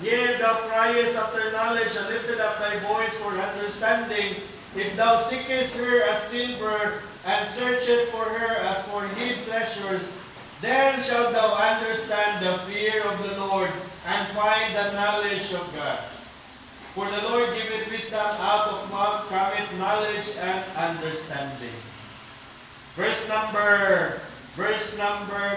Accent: Filipino